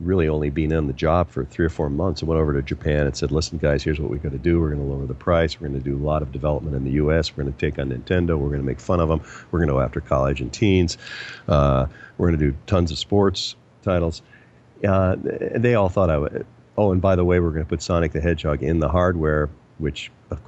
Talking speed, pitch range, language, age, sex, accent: 280 wpm, 75-95 Hz, English, 50-69, male, American